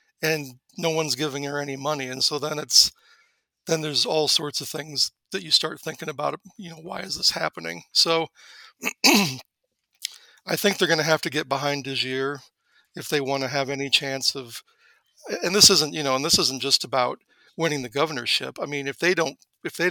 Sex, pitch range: male, 135-155 Hz